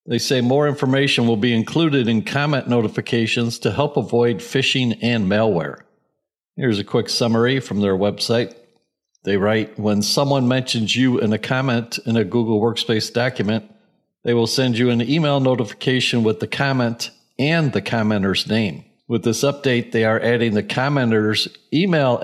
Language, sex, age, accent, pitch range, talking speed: English, male, 60-79, American, 110-130 Hz, 160 wpm